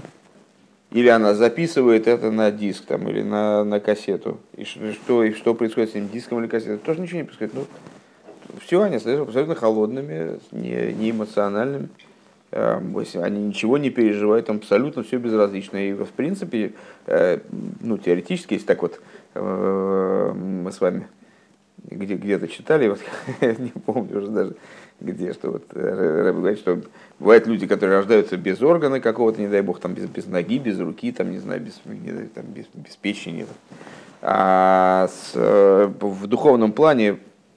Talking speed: 150 wpm